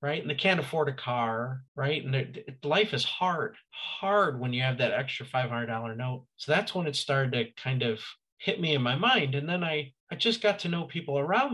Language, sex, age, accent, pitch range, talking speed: English, male, 40-59, American, 135-215 Hz, 235 wpm